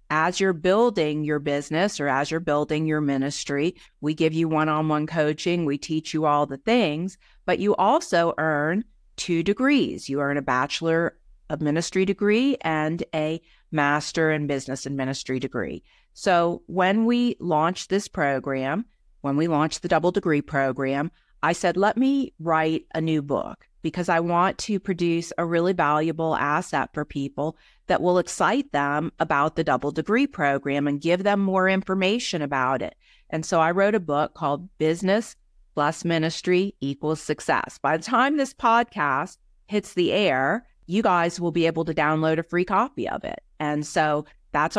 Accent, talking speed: American, 170 wpm